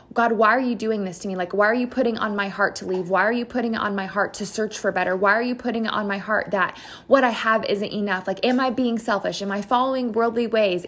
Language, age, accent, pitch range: English, 20-39, American, 205-255 Hz